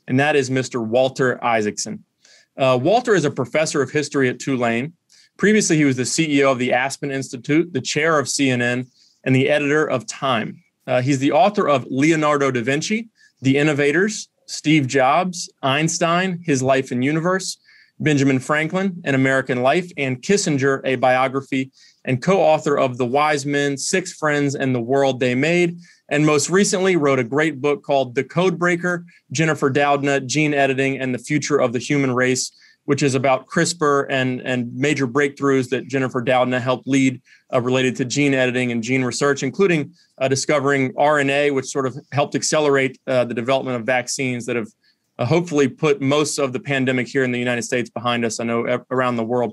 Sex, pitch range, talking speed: male, 130-150 Hz, 180 wpm